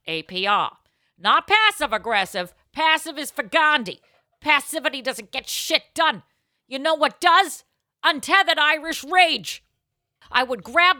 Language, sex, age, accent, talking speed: English, female, 50-69, American, 120 wpm